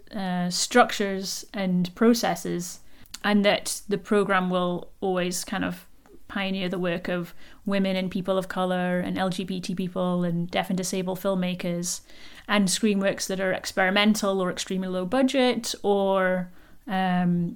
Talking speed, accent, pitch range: 135 wpm, British, 185-210 Hz